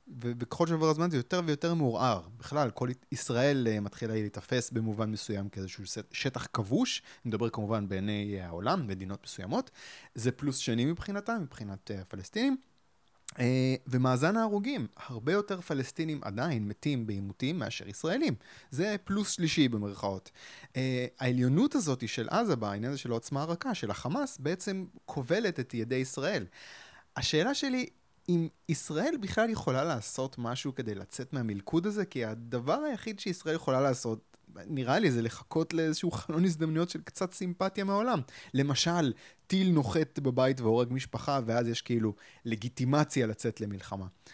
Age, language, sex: 30-49, Hebrew, male